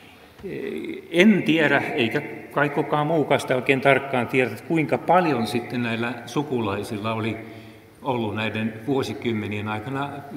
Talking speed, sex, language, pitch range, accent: 115 wpm, male, Finnish, 110-150 Hz, native